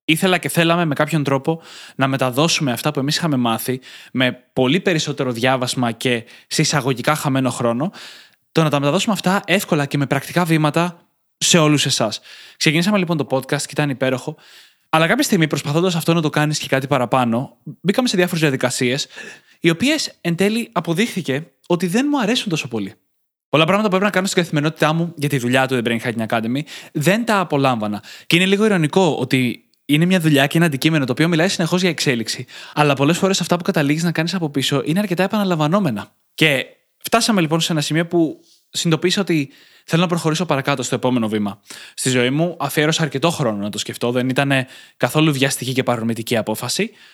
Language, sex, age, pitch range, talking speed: Greek, male, 20-39, 130-175 Hz, 185 wpm